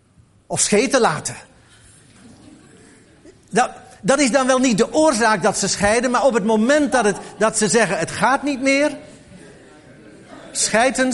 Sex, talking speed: male, 150 wpm